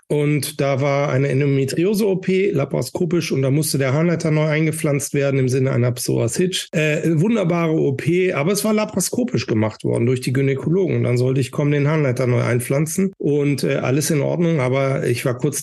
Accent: German